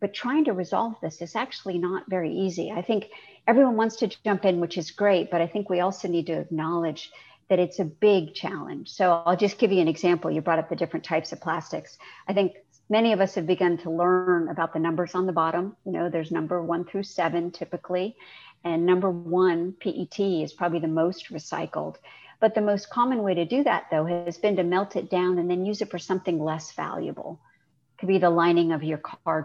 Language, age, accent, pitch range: English, 50-69, American, 170-205 Hz